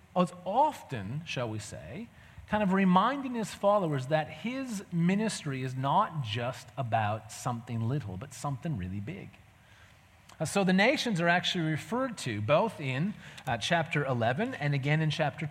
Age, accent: 30-49, American